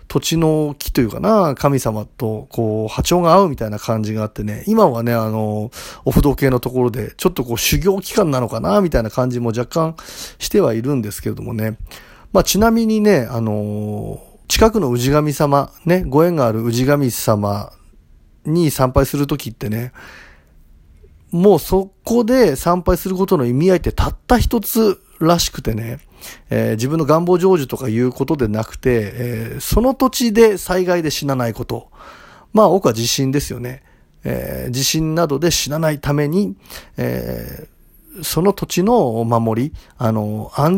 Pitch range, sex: 115-185 Hz, male